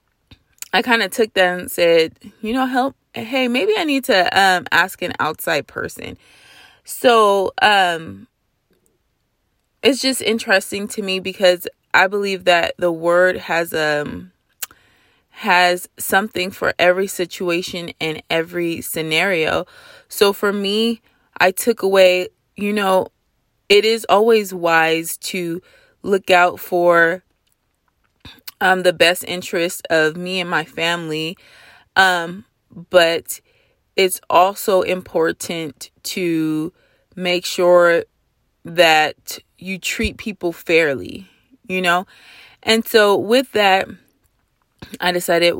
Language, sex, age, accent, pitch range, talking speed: English, female, 20-39, American, 170-210 Hz, 115 wpm